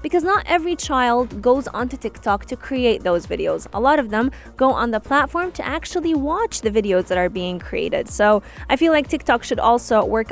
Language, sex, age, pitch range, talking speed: English, female, 20-39, 205-290 Hz, 210 wpm